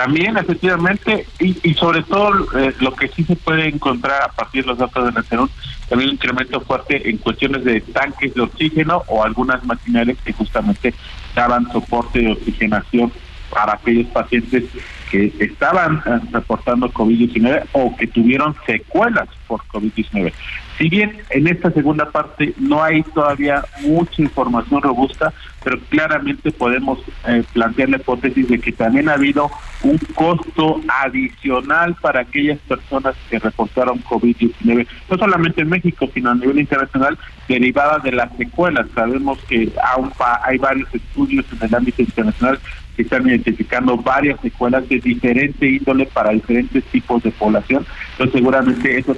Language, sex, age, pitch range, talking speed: Spanish, male, 40-59, 120-150 Hz, 150 wpm